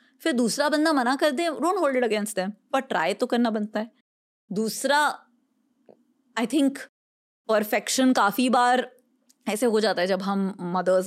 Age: 20-39